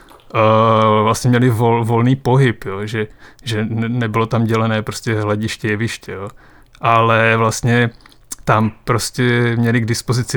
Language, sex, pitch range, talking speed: Czech, male, 115-130 Hz, 140 wpm